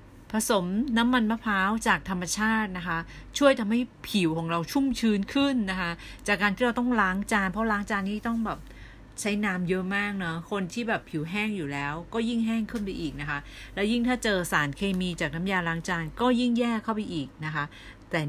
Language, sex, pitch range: Thai, female, 145-210 Hz